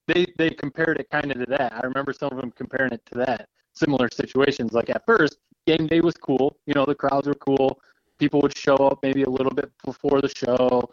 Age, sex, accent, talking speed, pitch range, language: 20-39, male, American, 235 wpm, 120-145 Hz, English